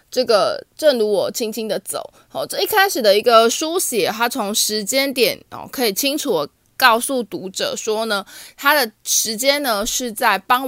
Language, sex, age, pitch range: Chinese, female, 20-39, 205-285 Hz